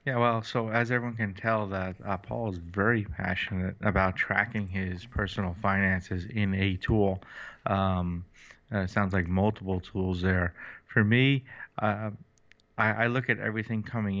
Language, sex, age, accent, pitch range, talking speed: English, male, 20-39, American, 90-105 Hz, 155 wpm